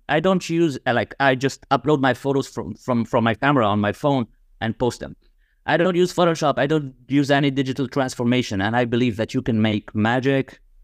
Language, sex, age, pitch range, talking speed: English, male, 30-49, 105-130 Hz, 205 wpm